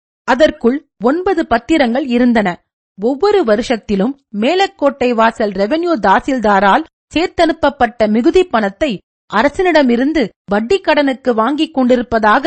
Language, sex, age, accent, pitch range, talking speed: Tamil, female, 40-59, native, 230-305 Hz, 85 wpm